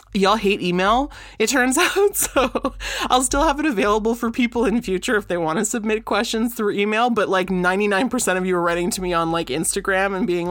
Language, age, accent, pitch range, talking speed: English, 30-49, American, 165-215 Hz, 225 wpm